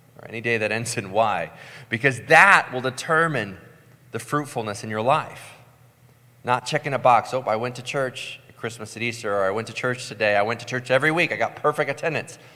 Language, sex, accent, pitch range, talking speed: English, male, American, 115-135 Hz, 210 wpm